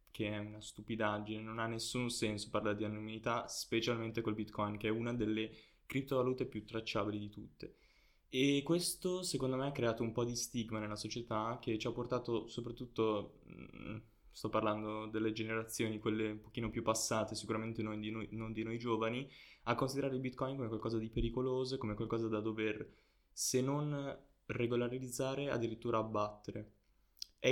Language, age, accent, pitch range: Italian, 10-29, native, 110-125 Hz